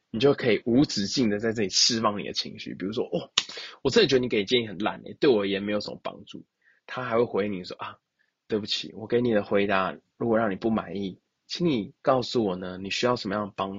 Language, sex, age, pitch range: Chinese, male, 20-39, 95-125 Hz